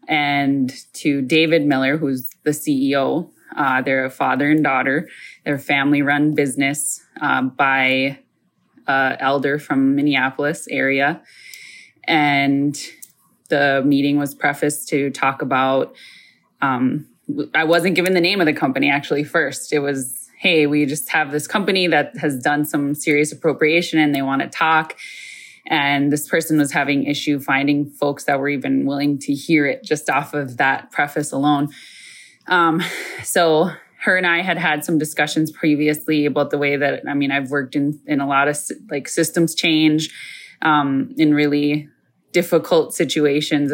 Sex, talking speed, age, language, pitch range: female, 155 wpm, 20-39, English, 140-155 Hz